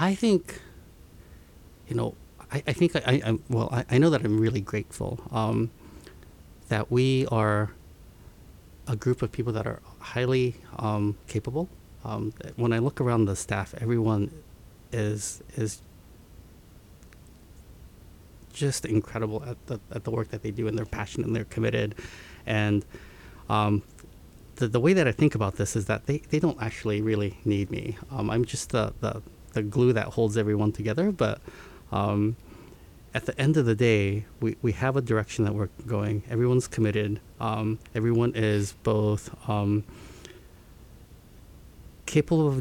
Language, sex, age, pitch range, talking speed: English, male, 30-49, 100-120 Hz, 155 wpm